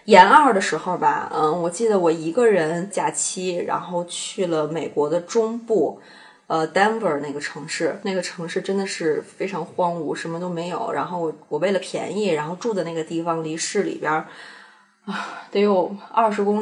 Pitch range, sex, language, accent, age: 165-210 Hz, female, Chinese, native, 20-39